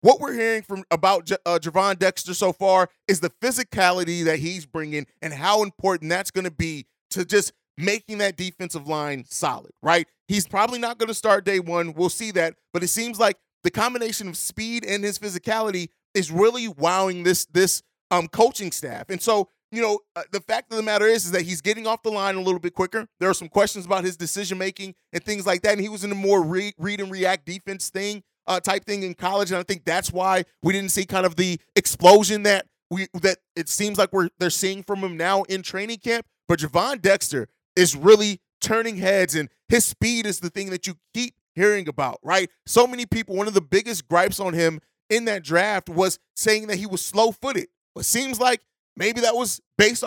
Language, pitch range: English, 175-210 Hz